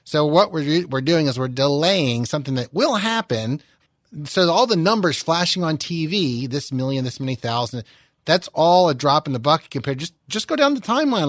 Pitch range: 130-175 Hz